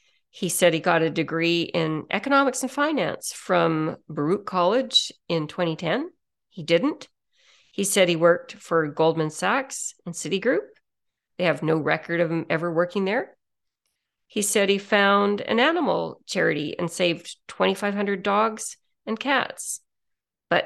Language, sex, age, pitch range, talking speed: English, female, 40-59, 180-255 Hz, 140 wpm